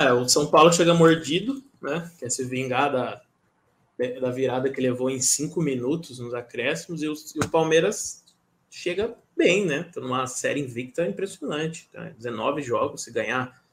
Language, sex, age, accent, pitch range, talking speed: Portuguese, male, 20-39, Brazilian, 115-150 Hz, 165 wpm